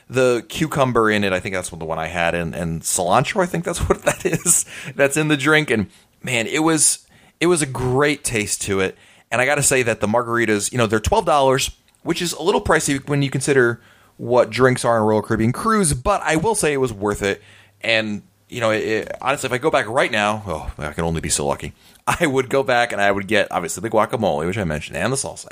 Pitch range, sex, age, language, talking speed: 100-145 Hz, male, 30-49, English, 255 wpm